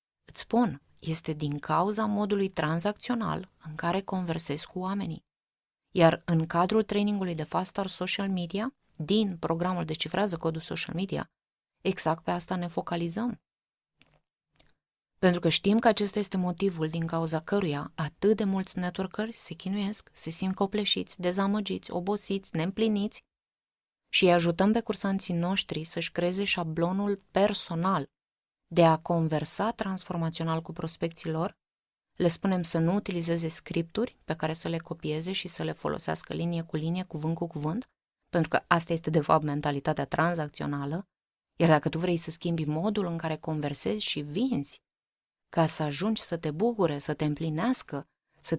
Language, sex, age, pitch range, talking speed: Romanian, female, 20-39, 160-200 Hz, 150 wpm